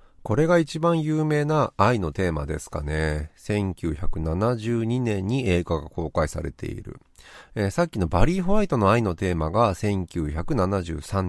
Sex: male